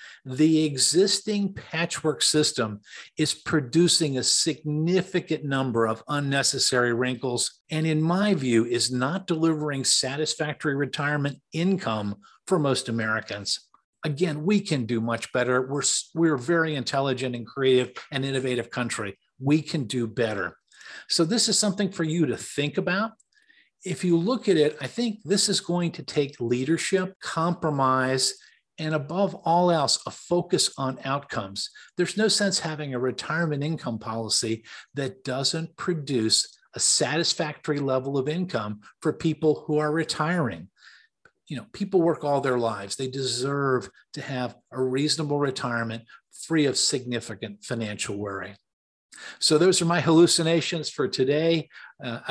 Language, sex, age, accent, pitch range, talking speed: English, male, 50-69, American, 125-165 Hz, 140 wpm